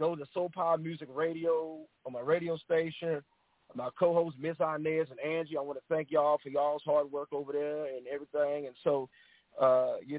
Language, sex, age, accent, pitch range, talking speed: English, male, 40-59, American, 140-165 Hz, 200 wpm